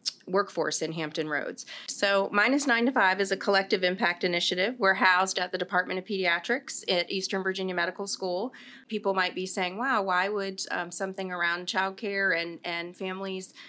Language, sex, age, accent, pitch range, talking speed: English, female, 40-59, American, 160-190 Hz, 175 wpm